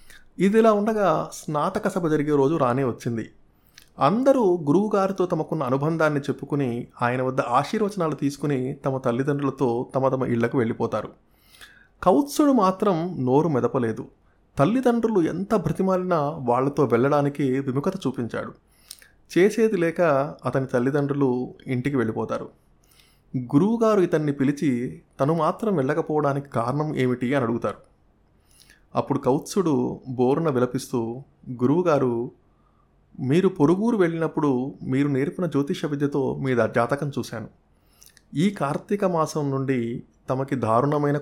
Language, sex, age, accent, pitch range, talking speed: Telugu, male, 30-49, native, 125-160 Hz, 105 wpm